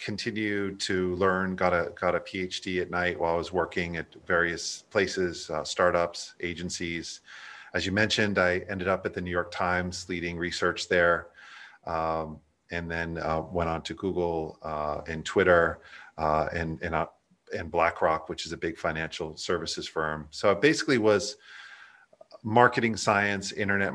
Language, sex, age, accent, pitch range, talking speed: English, male, 40-59, American, 90-100 Hz, 165 wpm